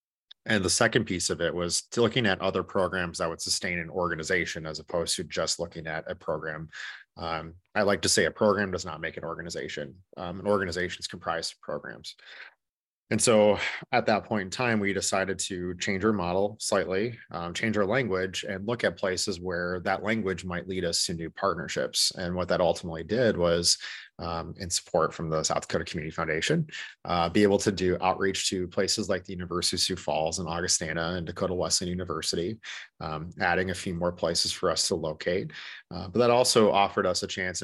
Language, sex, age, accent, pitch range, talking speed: English, male, 30-49, American, 85-100 Hz, 205 wpm